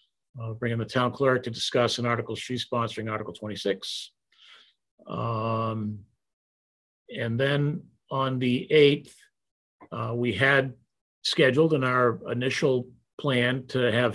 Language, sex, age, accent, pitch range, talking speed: English, male, 50-69, American, 115-135 Hz, 125 wpm